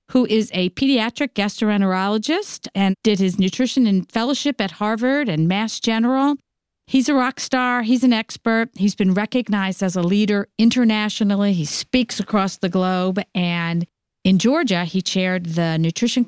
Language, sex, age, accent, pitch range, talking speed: English, female, 50-69, American, 180-230 Hz, 155 wpm